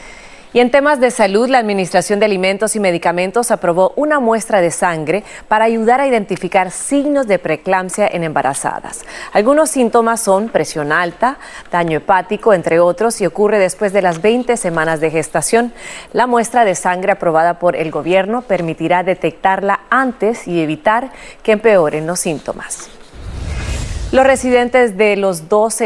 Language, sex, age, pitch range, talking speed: Spanish, female, 30-49, 180-230 Hz, 150 wpm